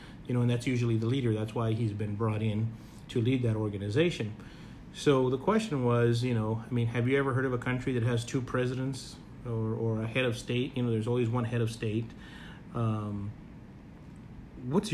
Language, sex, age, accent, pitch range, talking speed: English, male, 30-49, American, 115-140 Hz, 210 wpm